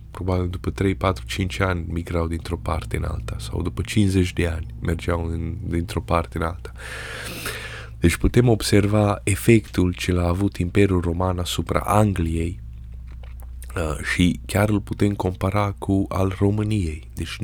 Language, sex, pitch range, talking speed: Romanian, male, 85-105 Hz, 140 wpm